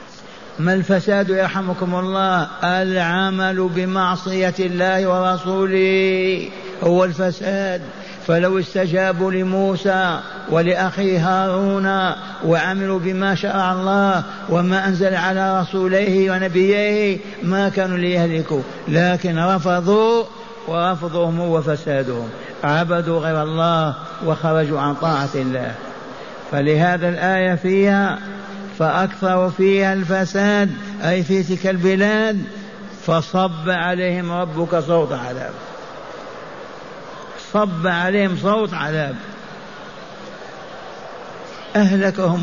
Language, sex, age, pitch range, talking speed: Arabic, male, 60-79, 160-190 Hz, 85 wpm